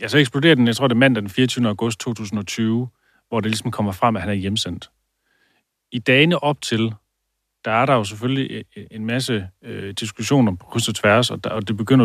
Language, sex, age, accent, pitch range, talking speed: Danish, male, 30-49, native, 105-125 Hz, 215 wpm